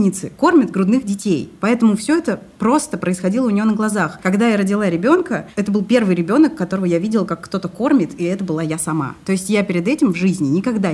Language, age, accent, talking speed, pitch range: Russian, 30-49, native, 215 wpm, 155-200 Hz